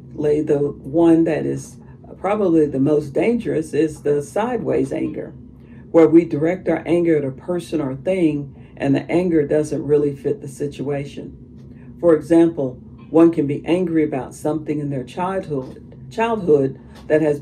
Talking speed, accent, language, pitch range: 150 wpm, American, English, 130-165 Hz